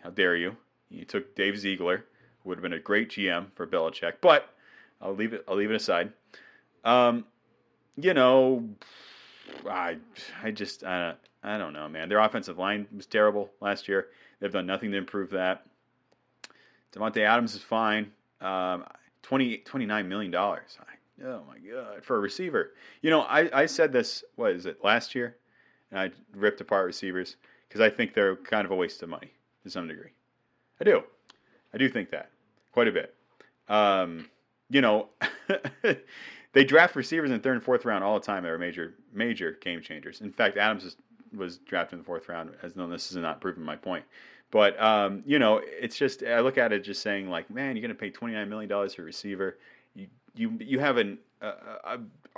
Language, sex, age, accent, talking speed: English, male, 30-49, American, 190 wpm